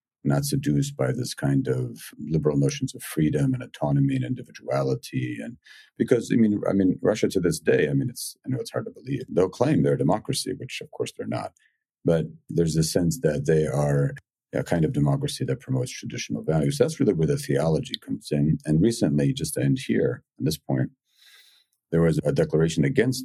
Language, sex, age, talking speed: English, male, 50-69, 205 wpm